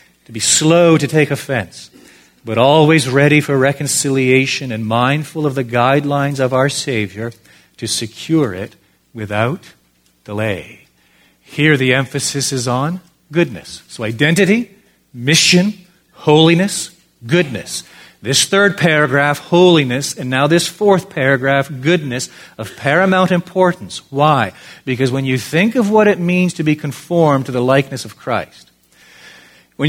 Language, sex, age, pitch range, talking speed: English, male, 40-59, 130-170 Hz, 135 wpm